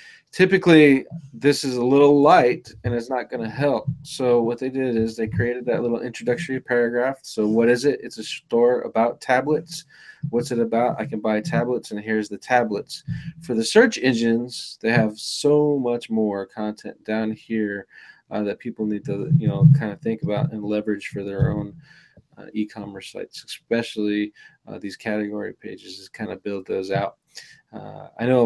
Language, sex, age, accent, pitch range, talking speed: English, male, 20-39, American, 105-130 Hz, 185 wpm